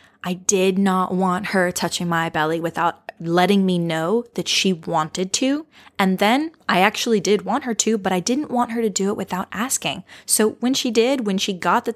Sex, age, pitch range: female, 20-39, 180-235 Hz